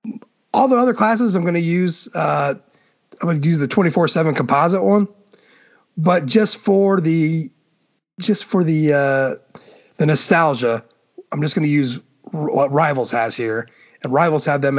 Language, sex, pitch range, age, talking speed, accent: English, male, 140-205 Hz, 30-49, 160 wpm, American